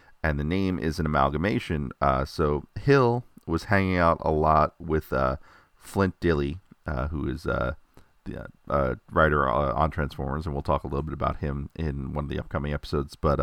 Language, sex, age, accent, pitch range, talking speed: English, male, 40-59, American, 70-90 Hz, 195 wpm